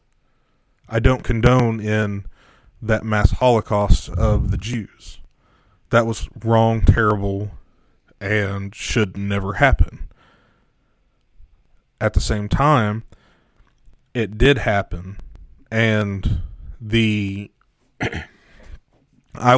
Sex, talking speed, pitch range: male, 85 wpm, 100-115 Hz